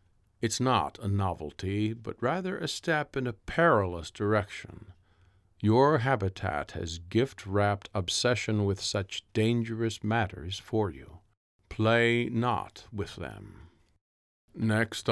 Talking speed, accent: 110 wpm, American